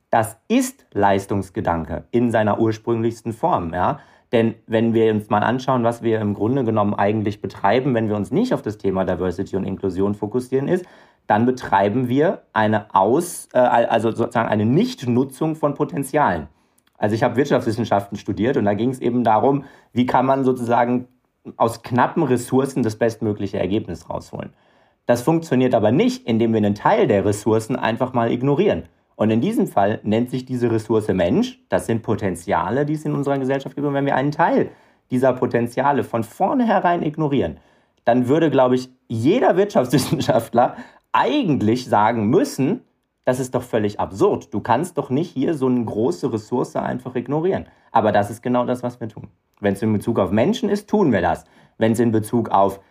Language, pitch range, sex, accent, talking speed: German, 105-135 Hz, male, German, 175 wpm